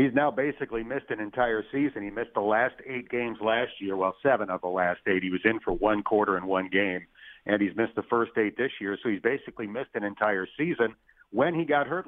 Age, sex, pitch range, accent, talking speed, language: 50-69, male, 105-130 Hz, American, 245 wpm, English